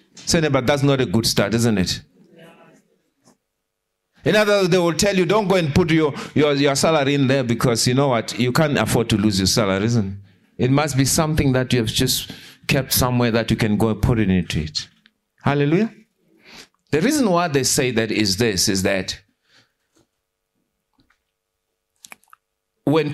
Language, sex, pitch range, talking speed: English, male, 120-175 Hz, 180 wpm